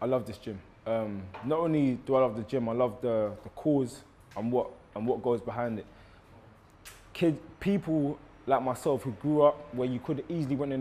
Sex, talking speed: male, 205 wpm